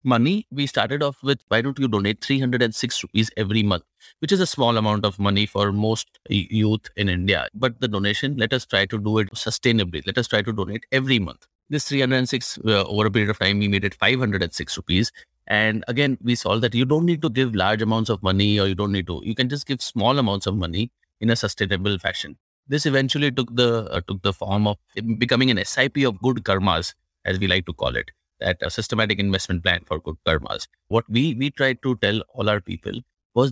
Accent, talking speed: Indian, 220 wpm